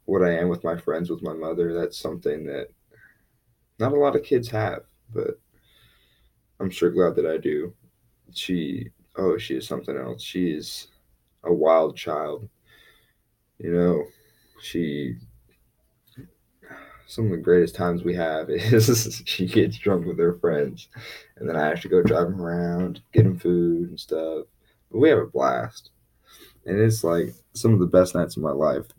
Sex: male